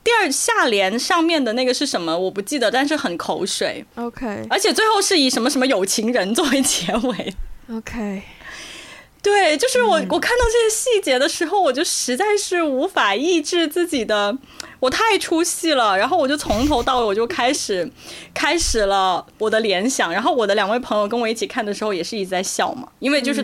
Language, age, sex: Chinese, 20-39, female